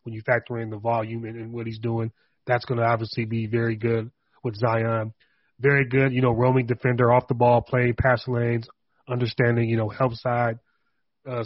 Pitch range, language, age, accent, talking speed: 115-130 Hz, English, 30-49, American, 200 wpm